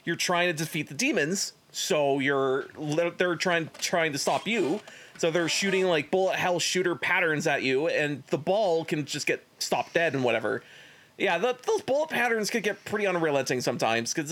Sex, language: male, English